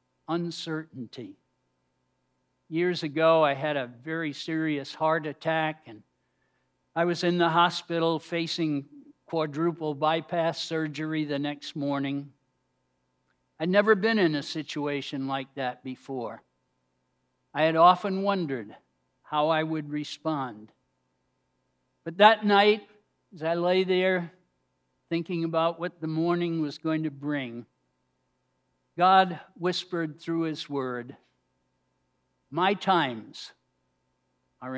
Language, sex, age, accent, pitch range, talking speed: English, male, 60-79, American, 135-170 Hz, 110 wpm